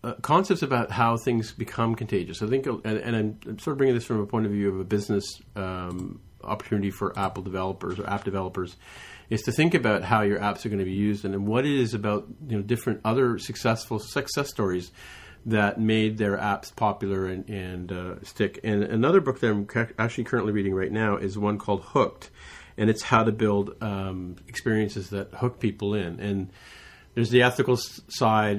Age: 40-59